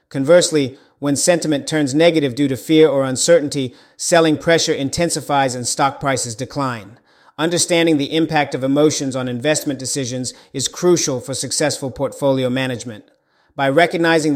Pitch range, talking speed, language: 130-150 Hz, 140 wpm, English